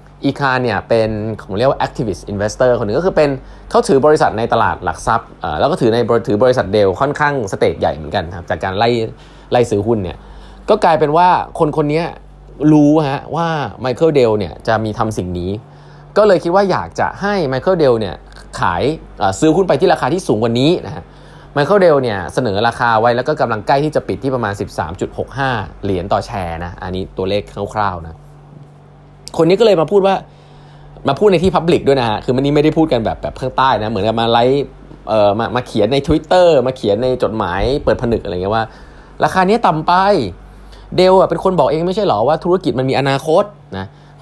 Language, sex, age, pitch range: Thai, male, 20-39, 110-160 Hz